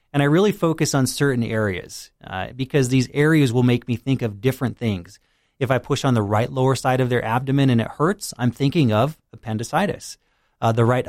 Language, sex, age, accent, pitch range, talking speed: English, male, 30-49, American, 115-135 Hz, 210 wpm